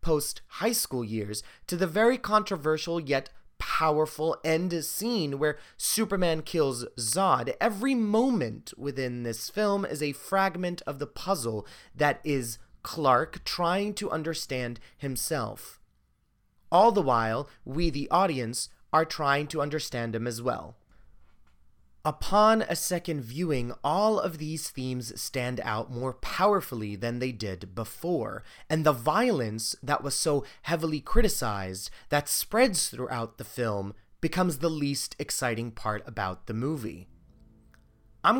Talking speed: 130 wpm